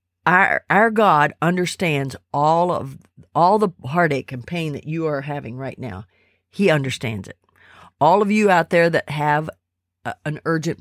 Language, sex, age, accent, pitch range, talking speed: English, female, 50-69, American, 135-165 Hz, 165 wpm